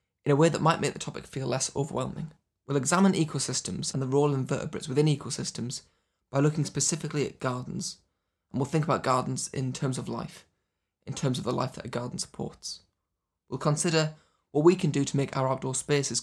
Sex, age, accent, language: male, 20-39, British, English